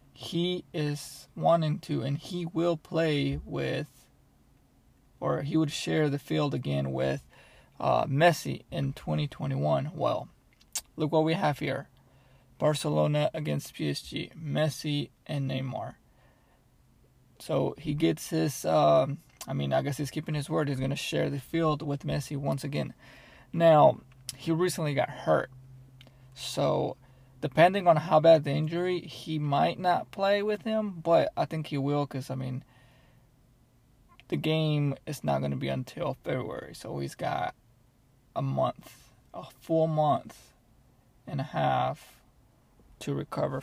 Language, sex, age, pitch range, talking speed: English, male, 20-39, 130-160 Hz, 145 wpm